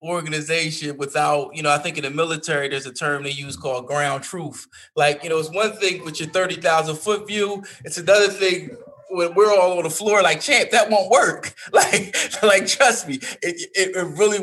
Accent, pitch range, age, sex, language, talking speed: American, 165-245 Hz, 20-39, male, English, 210 wpm